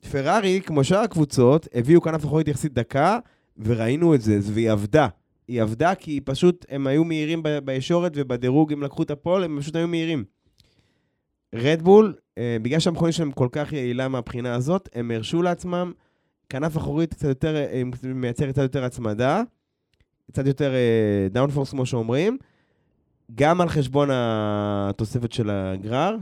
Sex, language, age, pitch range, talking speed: male, Hebrew, 20-39, 115-160 Hz, 150 wpm